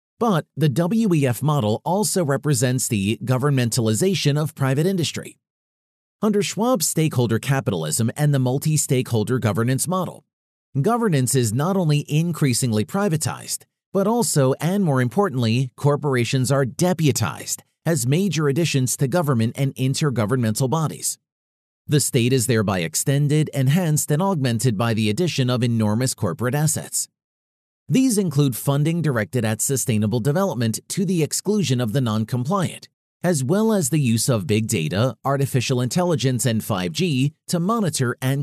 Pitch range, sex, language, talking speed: 120-160 Hz, male, English, 135 wpm